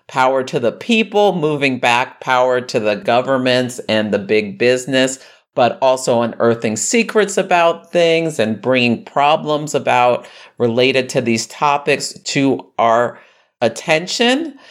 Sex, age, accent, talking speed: male, 50-69, American, 125 wpm